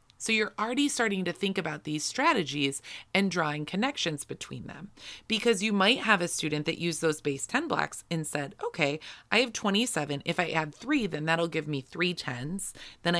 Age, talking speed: 30-49, 195 wpm